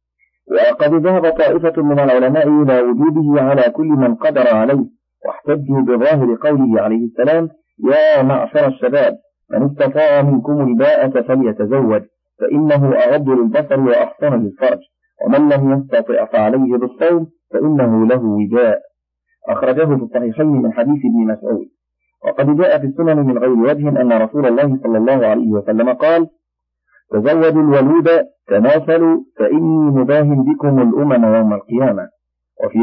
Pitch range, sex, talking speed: 115-170 Hz, male, 125 wpm